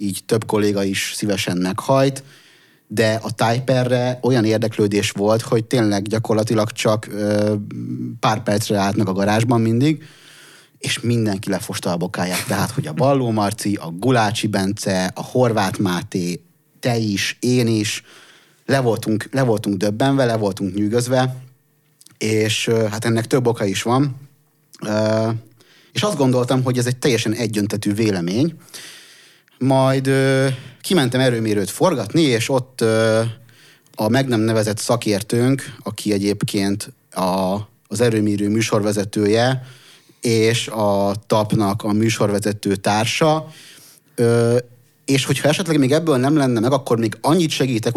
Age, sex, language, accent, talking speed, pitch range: 30-49, male, English, Finnish, 130 wpm, 105-135 Hz